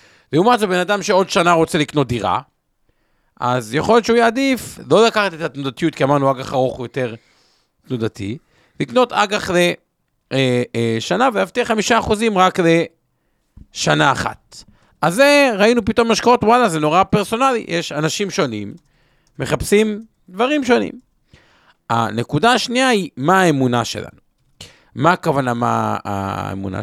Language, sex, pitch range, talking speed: Hebrew, male, 125-210 Hz, 130 wpm